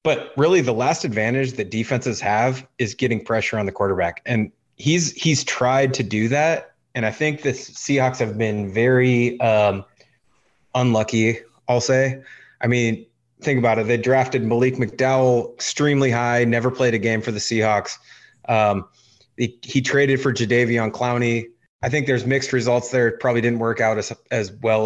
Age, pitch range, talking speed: 30-49, 115-130 Hz, 175 wpm